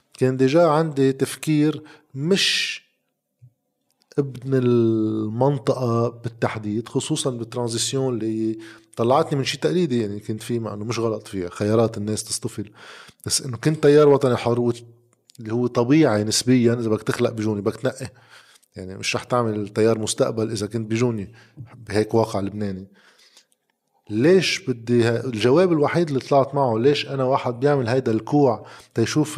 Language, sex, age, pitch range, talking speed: Arabic, male, 20-39, 110-135 Hz, 140 wpm